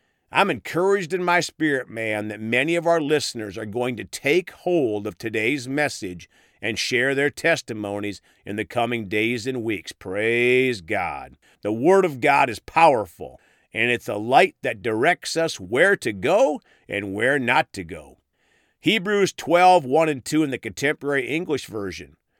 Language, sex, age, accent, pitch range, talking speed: English, male, 50-69, American, 115-165 Hz, 165 wpm